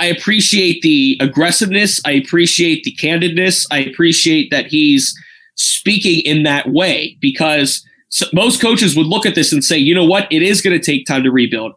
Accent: American